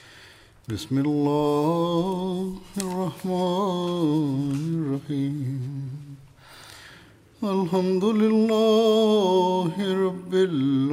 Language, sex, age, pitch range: English, male, 50-69, 135-170 Hz